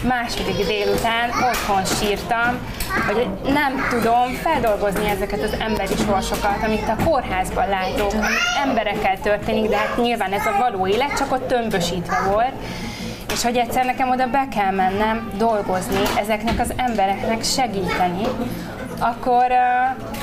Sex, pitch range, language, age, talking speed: female, 200-240 Hz, Hungarian, 20-39, 135 wpm